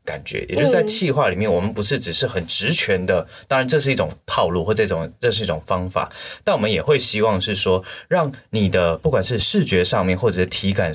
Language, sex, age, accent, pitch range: Chinese, male, 20-39, native, 90-115 Hz